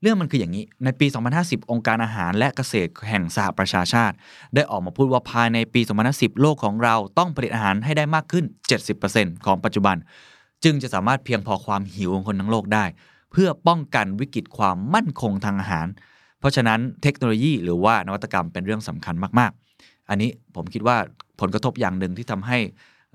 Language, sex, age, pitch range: Thai, male, 20-39, 95-130 Hz